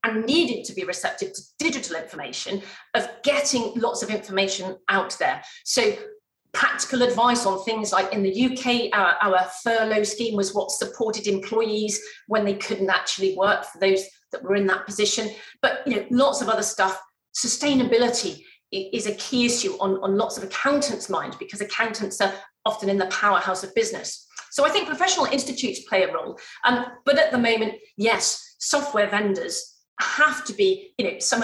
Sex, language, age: female, English, 40-59